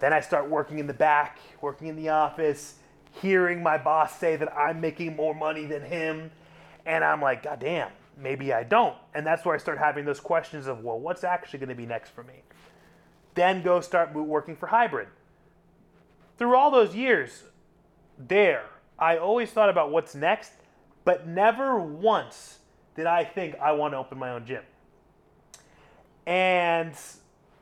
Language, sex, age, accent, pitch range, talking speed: English, male, 30-49, American, 155-200 Hz, 165 wpm